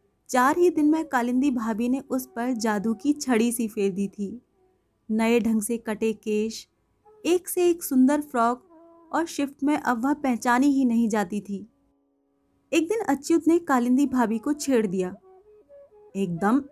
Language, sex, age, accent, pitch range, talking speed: Hindi, female, 30-49, native, 230-330 Hz, 165 wpm